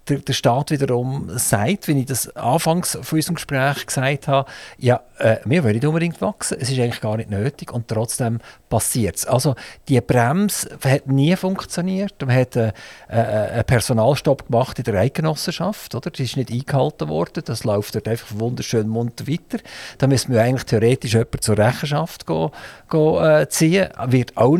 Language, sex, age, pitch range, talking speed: German, male, 50-69, 115-155 Hz, 175 wpm